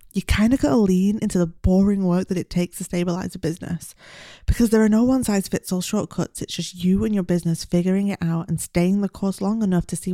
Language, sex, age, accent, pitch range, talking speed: English, female, 20-39, British, 180-210 Hz, 230 wpm